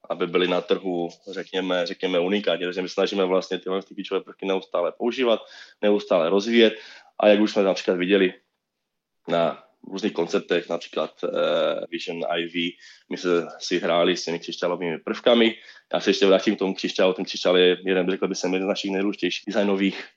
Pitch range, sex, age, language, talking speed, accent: 90-105 Hz, male, 20-39, Czech, 175 wpm, native